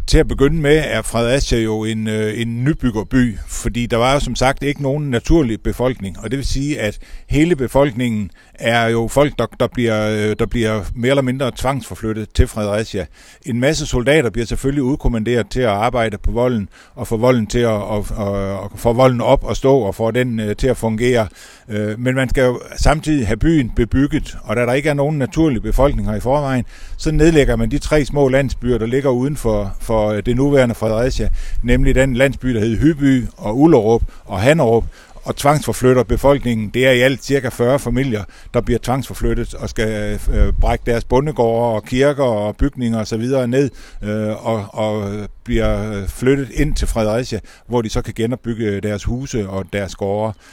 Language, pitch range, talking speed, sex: Danish, 110-130 Hz, 190 wpm, male